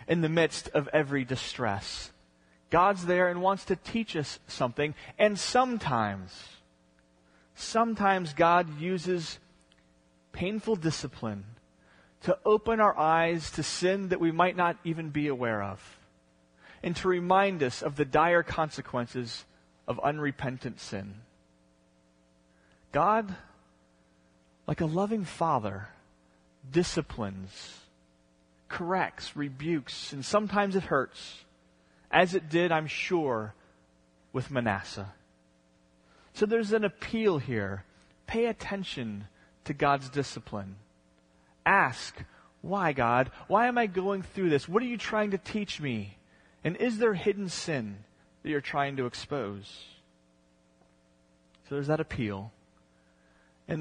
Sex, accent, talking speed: male, American, 120 wpm